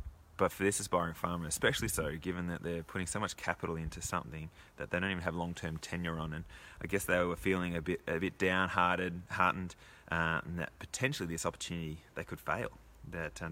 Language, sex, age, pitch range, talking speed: English, male, 20-39, 85-95 Hz, 210 wpm